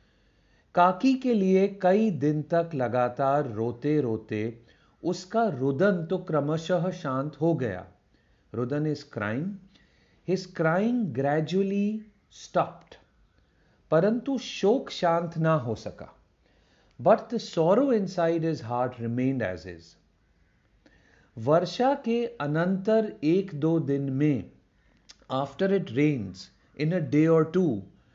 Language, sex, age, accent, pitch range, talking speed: Hindi, male, 40-59, native, 125-185 Hz, 115 wpm